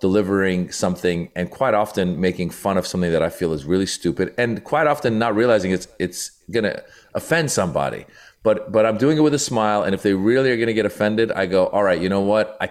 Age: 40-59